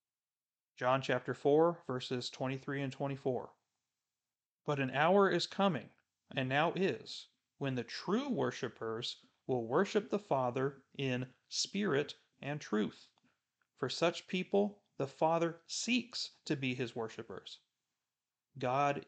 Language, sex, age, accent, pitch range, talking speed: English, male, 40-59, American, 130-155 Hz, 120 wpm